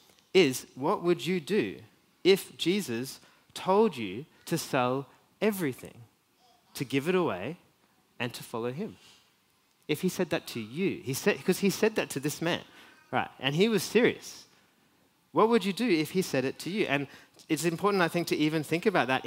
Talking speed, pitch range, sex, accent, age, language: 185 wpm, 125-175 Hz, male, Australian, 30-49, English